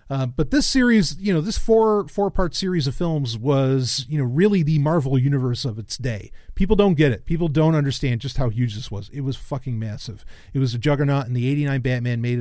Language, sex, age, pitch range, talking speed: English, male, 40-59, 115-155 Hz, 235 wpm